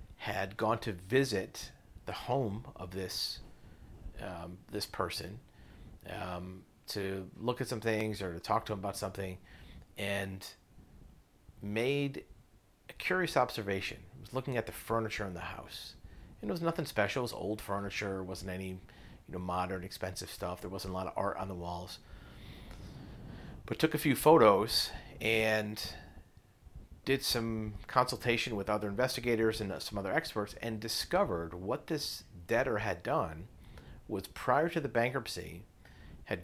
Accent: American